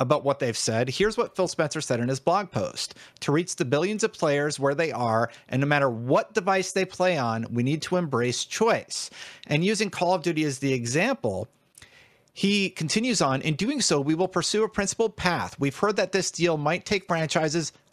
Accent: American